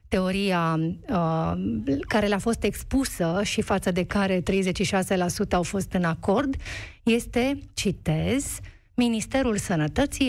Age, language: 40-59, Romanian